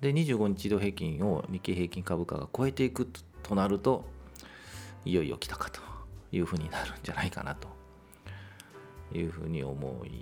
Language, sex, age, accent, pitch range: Japanese, male, 40-59, native, 80-105 Hz